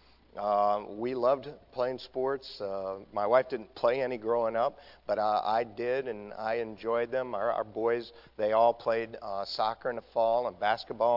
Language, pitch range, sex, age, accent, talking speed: English, 105-130 Hz, male, 50-69, American, 185 wpm